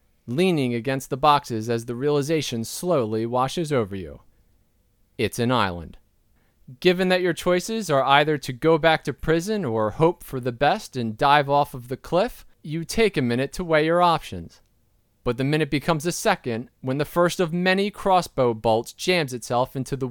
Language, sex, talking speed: English, male, 180 wpm